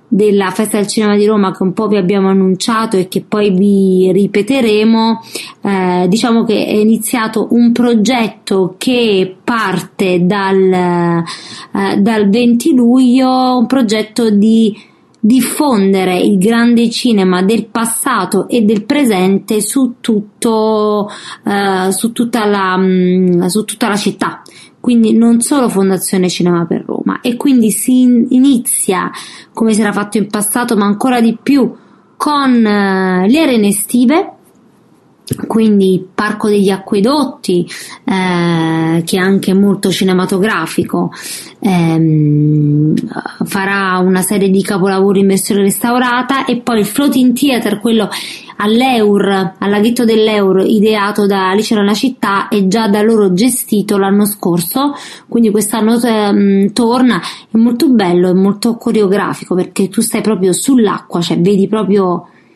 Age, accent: 20-39, Italian